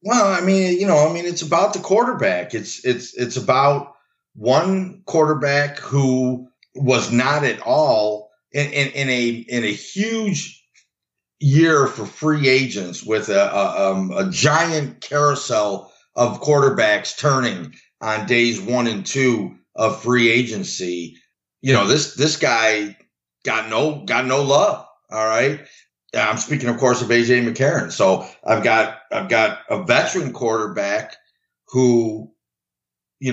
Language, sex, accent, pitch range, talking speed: English, male, American, 115-145 Hz, 145 wpm